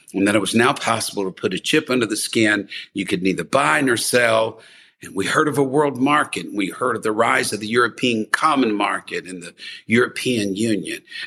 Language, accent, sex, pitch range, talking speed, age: English, American, male, 110-165 Hz, 215 wpm, 60-79